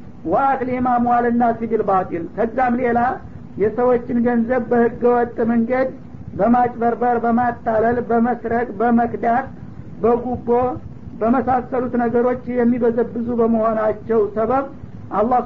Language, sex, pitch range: Amharic, male, 225-245 Hz